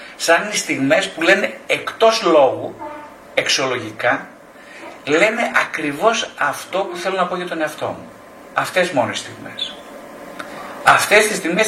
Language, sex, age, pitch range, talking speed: Greek, male, 50-69, 130-185 Hz, 135 wpm